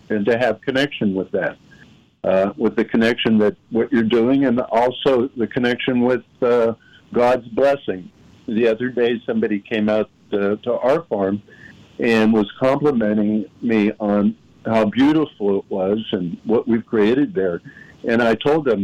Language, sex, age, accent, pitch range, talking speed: English, male, 60-79, American, 110-140 Hz, 160 wpm